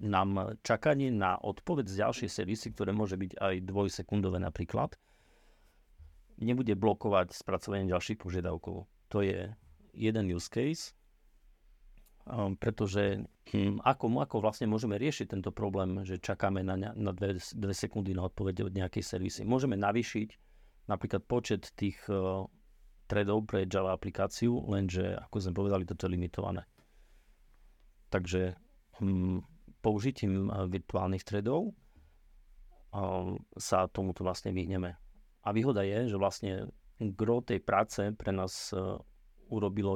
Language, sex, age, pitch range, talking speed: Slovak, male, 40-59, 95-110 Hz, 125 wpm